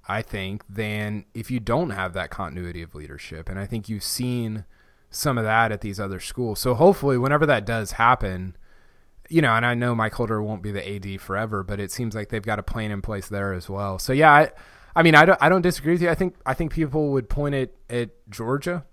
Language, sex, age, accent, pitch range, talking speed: English, male, 20-39, American, 105-135 Hz, 240 wpm